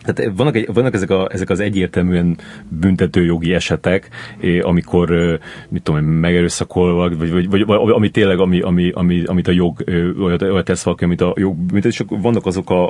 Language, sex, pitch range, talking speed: Hungarian, male, 90-100 Hz, 175 wpm